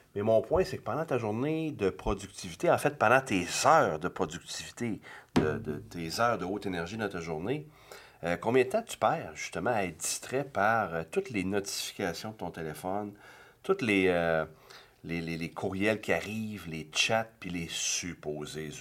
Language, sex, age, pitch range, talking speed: French, male, 40-59, 85-115 Hz, 175 wpm